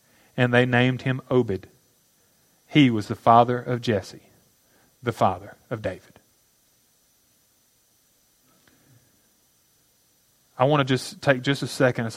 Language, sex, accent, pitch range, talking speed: English, male, American, 110-135 Hz, 120 wpm